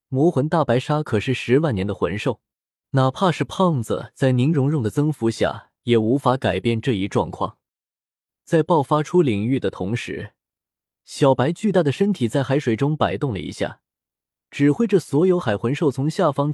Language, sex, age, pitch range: Chinese, male, 20-39, 115-160 Hz